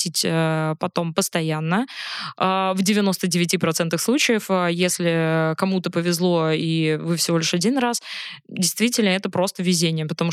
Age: 20-39